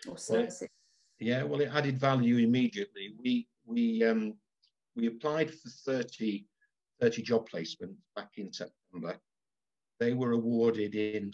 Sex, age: male, 50-69